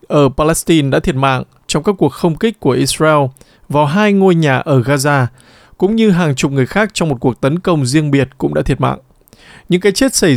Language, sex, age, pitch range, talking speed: Vietnamese, male, 20-39, 140-185 Hz, 225 wpm